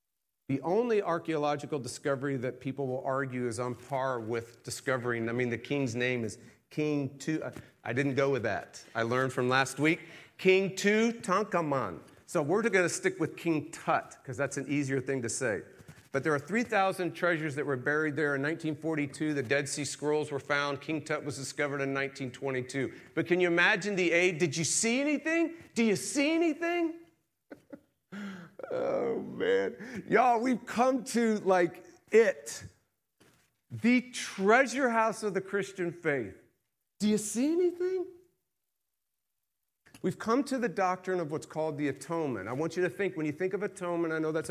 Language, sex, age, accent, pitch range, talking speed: English, male, 40-59, American, 140-205 Hz, 175 wpm